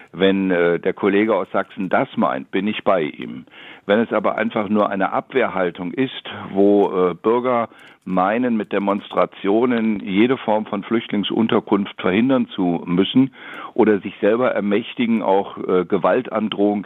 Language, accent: German, German